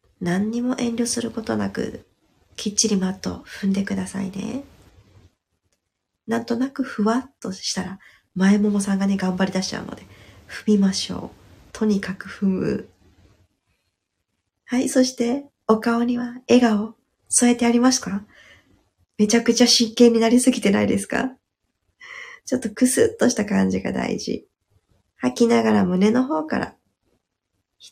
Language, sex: Japanese, female